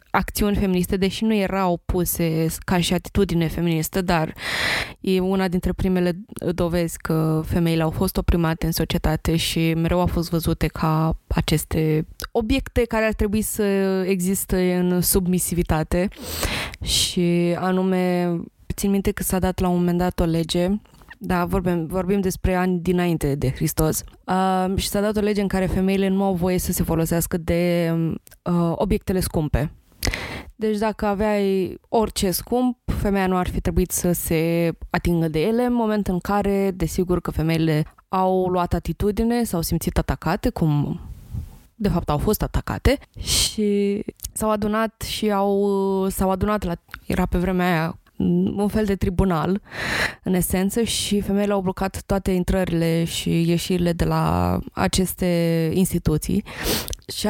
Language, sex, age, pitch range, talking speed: Romanian, female, 20-39, 170-200 Hz, 150 wpm